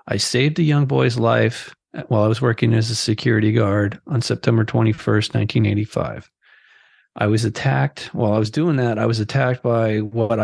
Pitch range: 110-125 Hz